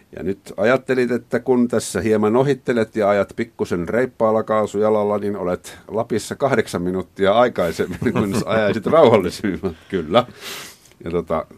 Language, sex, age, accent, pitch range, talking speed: Finnish, male, 50-69, native, 90-115 Hz, 130 wpm